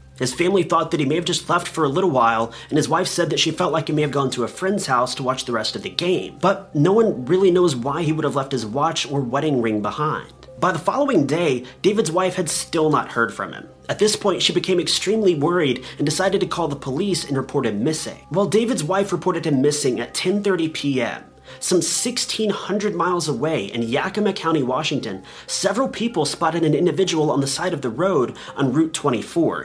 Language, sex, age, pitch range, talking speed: English, male, 30-49, 140-185 Hz, 225 wpm